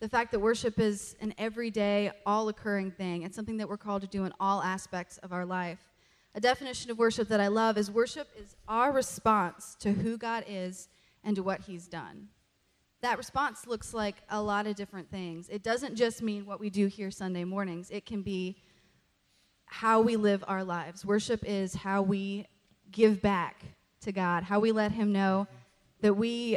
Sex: female